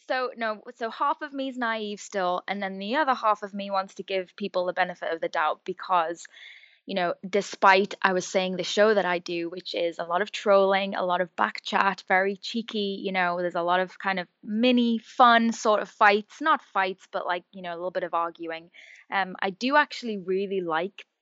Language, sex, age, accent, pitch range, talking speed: English, female, 10-29, British, 185-225 Hz, 225 wpm